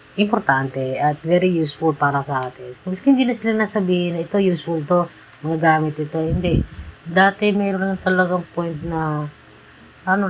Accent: native